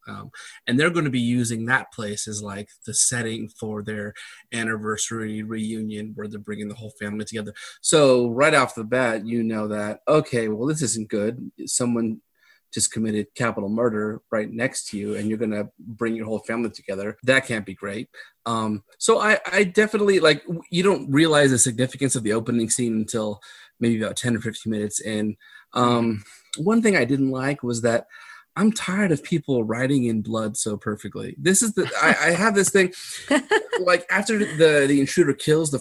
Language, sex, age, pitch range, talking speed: English, male, 30-49, 110-135 Hz, 185 wpm